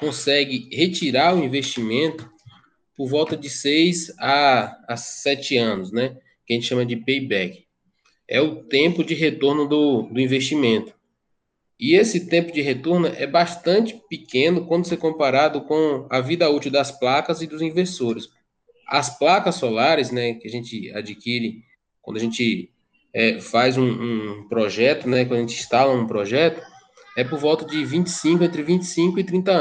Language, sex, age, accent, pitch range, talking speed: Portuguese, male, 20-39, Brazilian, 130-170 Hz, 160 wpm